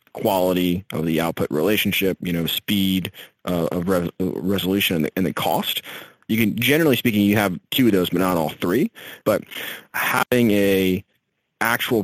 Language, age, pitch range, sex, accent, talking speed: English, 30-49, 85-100 Hz, male, American, 170 wpm